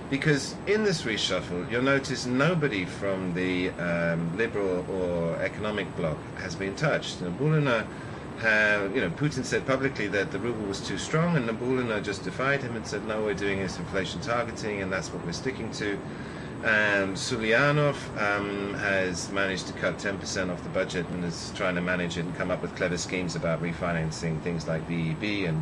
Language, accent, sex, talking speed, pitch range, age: English, British, male, 180 wpm, 90-130 Hz, 30-49